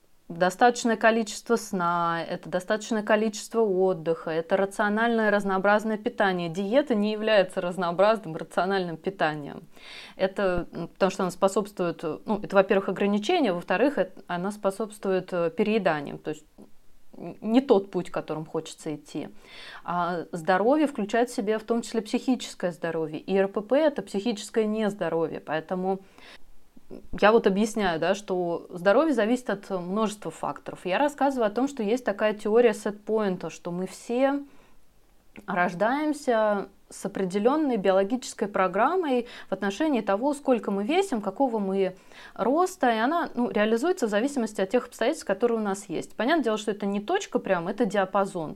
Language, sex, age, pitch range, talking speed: Russian, female, 20-39, 185-235 Hz, 140 wpm